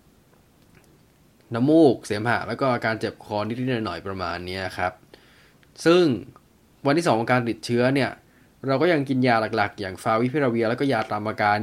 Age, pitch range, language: 20-39, 110-130 Hz, Thai